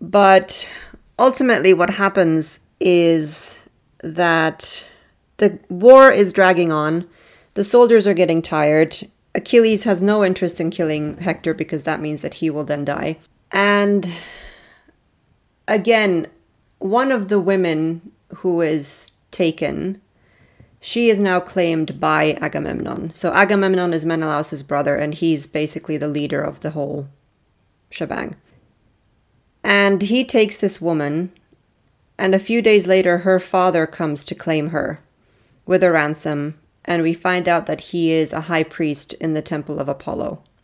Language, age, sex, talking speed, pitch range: English, 30-49, female, 140 wpm, 155-190 Hz